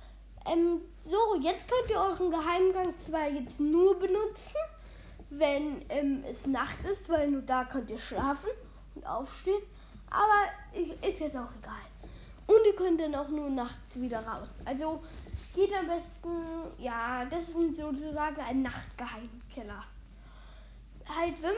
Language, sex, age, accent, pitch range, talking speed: German, female, 10-29, German, 290-370 Hz, 140 wpm